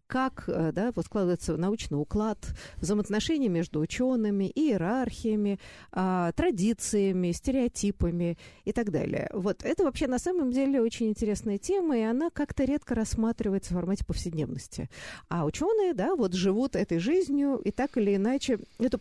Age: 50-69